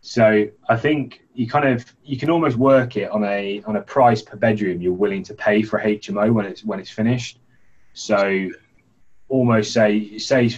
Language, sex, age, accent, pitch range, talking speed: English, male, 20-39, British, 100-120 Hz, 185 wpm